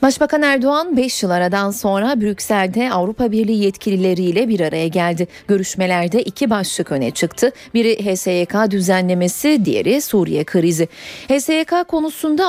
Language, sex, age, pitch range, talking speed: Turkish, female, 40-59, 180-250 Hz, 125 wpm